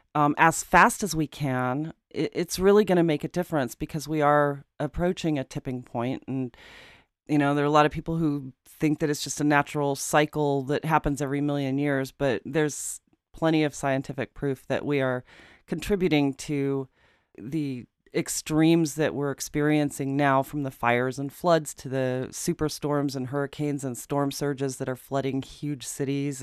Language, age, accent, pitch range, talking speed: English, 40-59, American, 140-160 Hz, 175 wpm